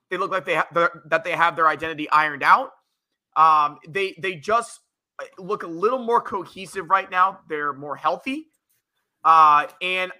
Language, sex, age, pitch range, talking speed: English, male, 20-39, 160-200 Hz, 165 wpm